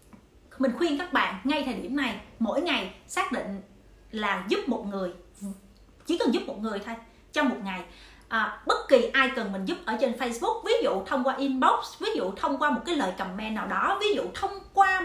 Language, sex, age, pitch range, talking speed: Vietnamese, female, 30-49, 220-305 Hz, 210 wpm